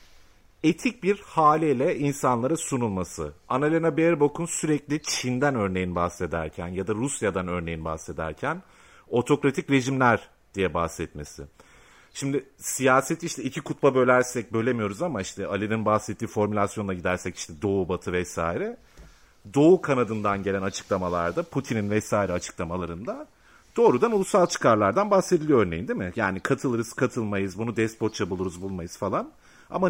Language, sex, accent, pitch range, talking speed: Turkish, male, native, 90-145 Hz, 120 wpm